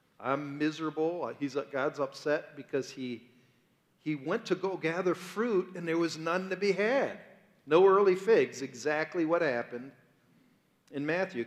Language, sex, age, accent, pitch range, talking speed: English, male, 40-59, American, 135-180 Hz, 140 wpm